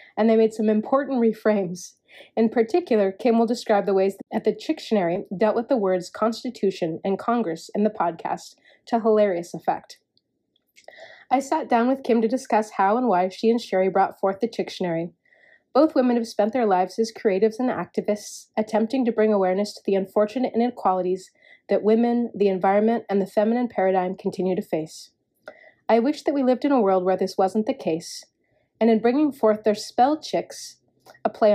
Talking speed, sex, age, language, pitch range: 185 wpm, female, 30-49, English, 195-235 Hz